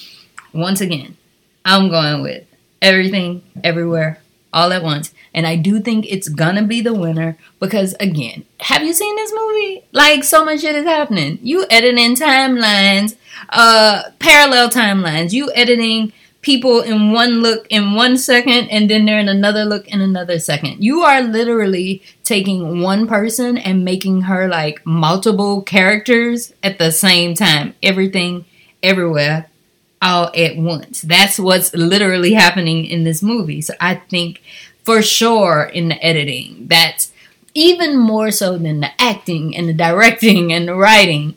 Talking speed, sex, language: 155 wpm, female, English